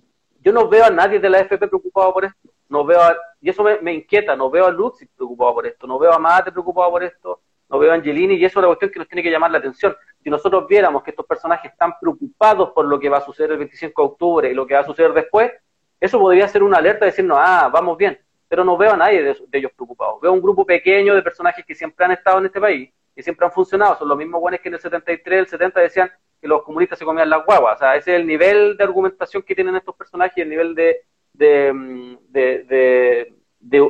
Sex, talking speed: male, 260 wpm